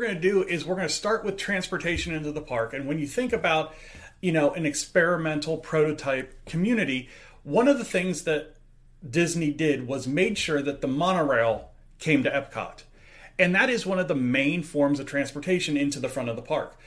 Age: 30-49